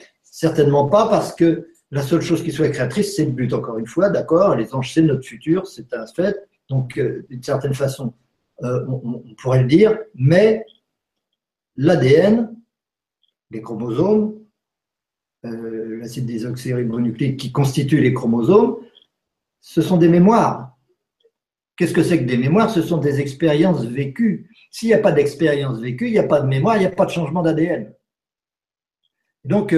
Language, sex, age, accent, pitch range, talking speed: French, male, 50-69, French, 125-175 Hz, 165 wpm